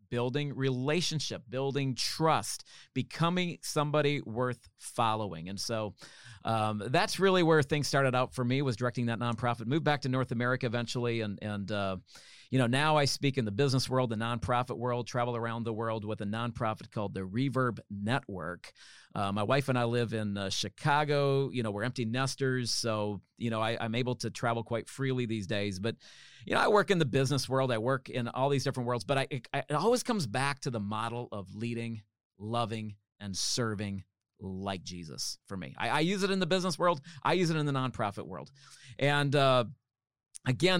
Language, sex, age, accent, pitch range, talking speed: English, male, 40-59, American, 110-145 Hz, 195 wpm